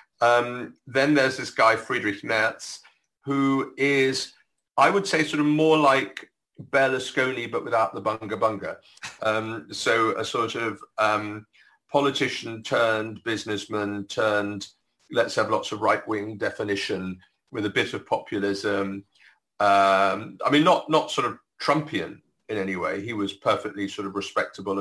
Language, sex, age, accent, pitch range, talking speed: English, male, 40-59, British, 100-135 Hz, 150 wpm